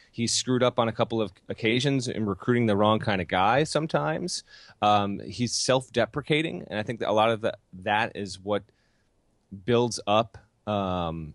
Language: English